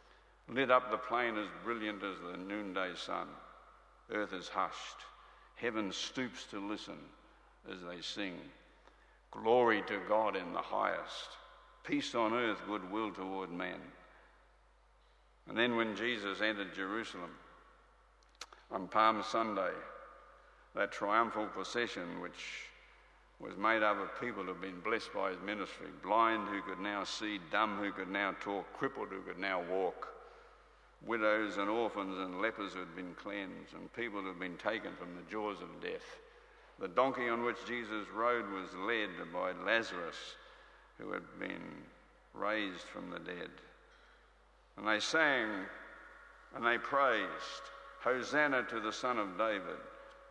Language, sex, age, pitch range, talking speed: English, male, 60-79, 95-115 Hz, 145 wpm